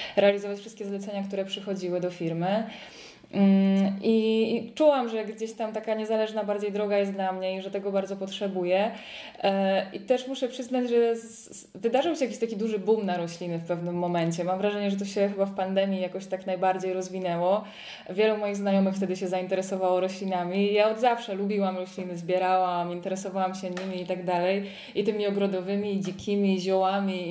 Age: 20-39